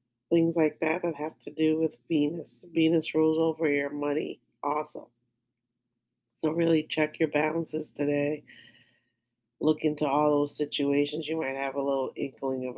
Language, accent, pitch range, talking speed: English, American, 135-165 Hz, 155 wpm